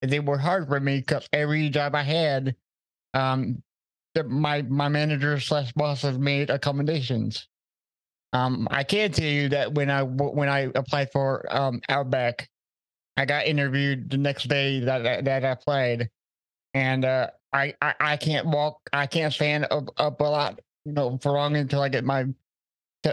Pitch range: 130-150 Hz